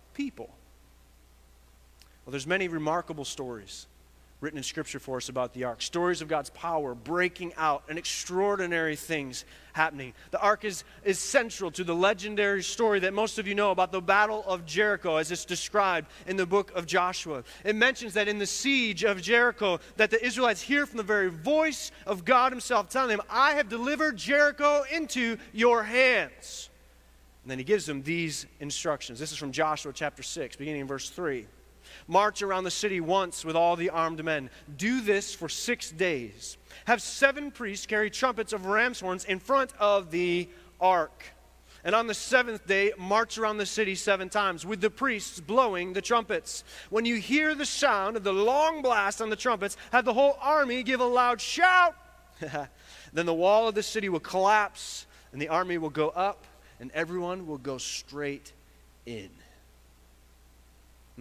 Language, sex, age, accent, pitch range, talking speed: English, male, 30-49, American, 145-220 Hz, 180 wpm